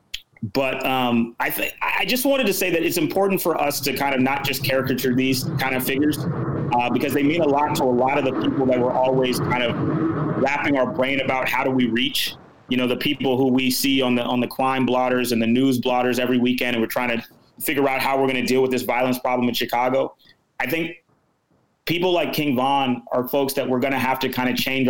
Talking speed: 245 wpm